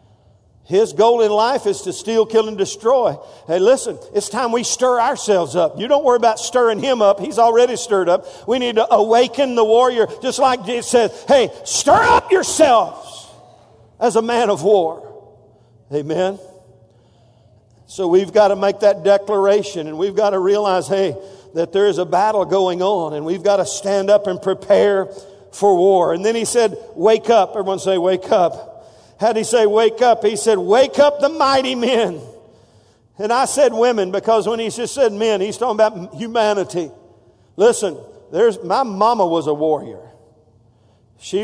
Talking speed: 180 wpm